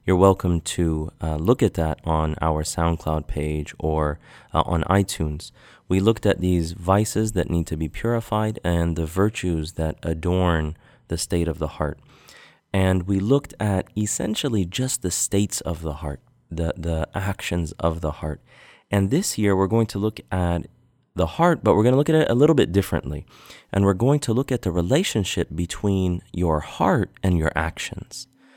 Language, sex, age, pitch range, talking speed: English, male, 30-49, 80-100 Hz, 185 wpm